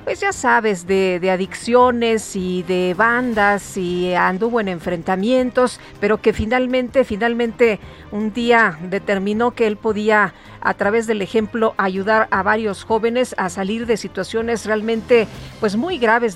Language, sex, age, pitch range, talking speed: Spanish, female, 40-59, 210-255 Hz, 145 wpm